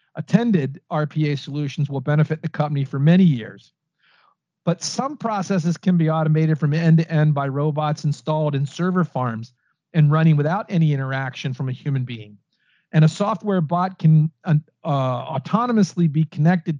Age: 40-59